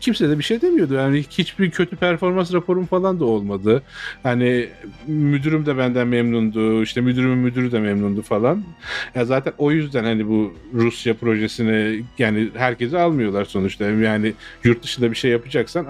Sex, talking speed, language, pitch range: male, 155 wpm, Turkish, 115-145 Hz